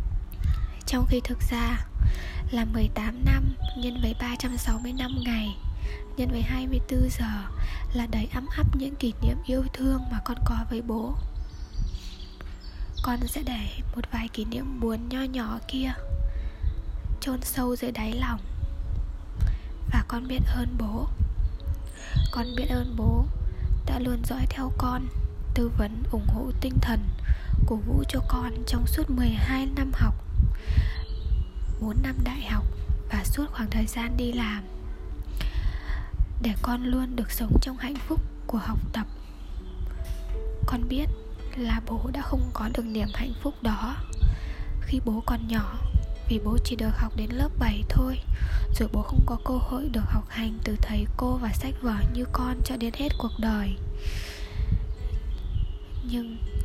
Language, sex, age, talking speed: Vietnamese, female, 10-29, 155 wpm